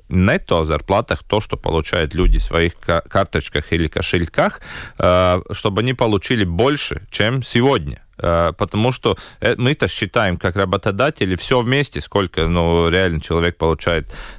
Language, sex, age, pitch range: Russian, male, 30-49, 90-120 Hz